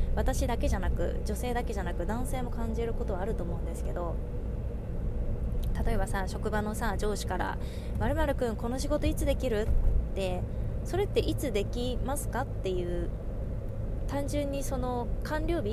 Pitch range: 95-115 Hz